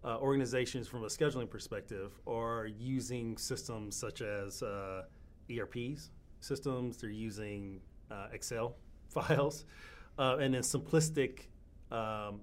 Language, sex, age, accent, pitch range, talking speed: English, male, 30-49, American, 95-120 Hz, 115 wpm